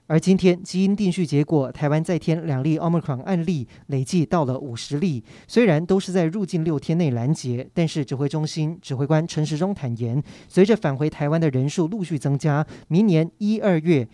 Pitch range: 140-185 Hz